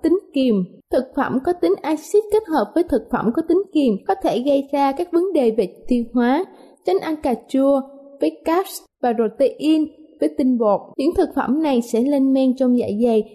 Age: 20-39